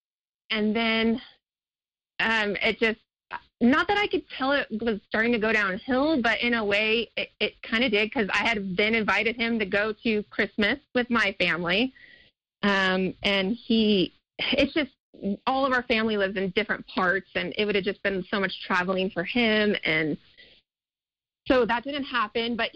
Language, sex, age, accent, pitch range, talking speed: English, female, 30-49, American, 200-240 Hz, 180 wpm